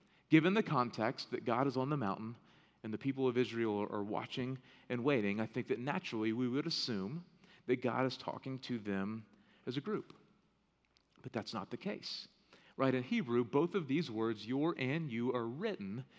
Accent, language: American, English